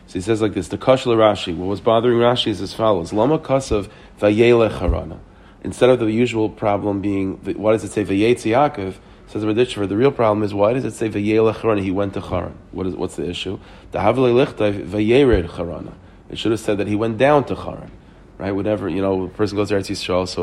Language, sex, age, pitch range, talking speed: English, male, 40-59, 95-110 Hz, 215 wpm